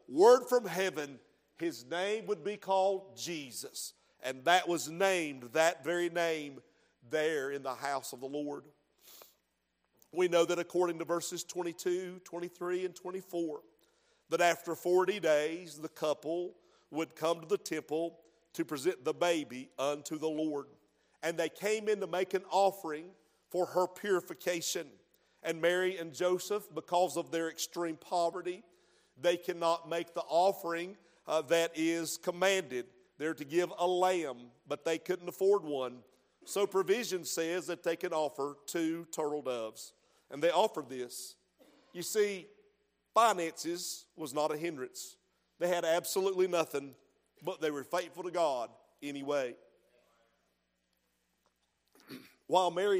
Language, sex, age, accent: English, male, 50-69, American